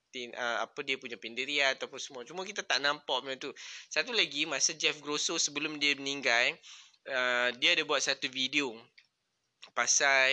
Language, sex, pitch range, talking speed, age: Malay, male, 135-175 Hz, 165 wpm, 20-39